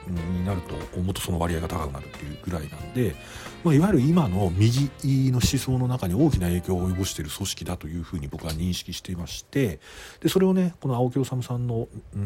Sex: male